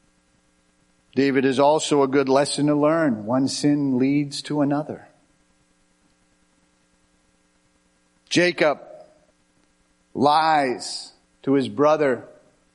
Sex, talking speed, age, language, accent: male, 85 wpm, 50-69, English, American